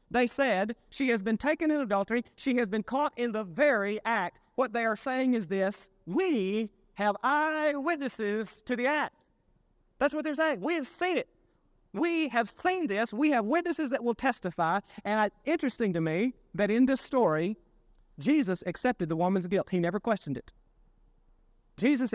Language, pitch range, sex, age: English, 220-300 Hz, male, 30-49